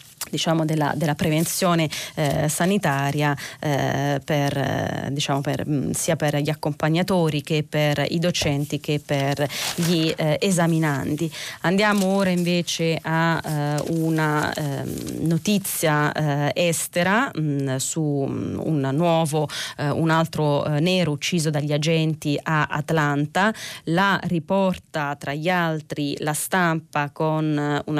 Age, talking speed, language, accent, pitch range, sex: 30-49, 120 wpm, Italian, native, 145-170 Hz, female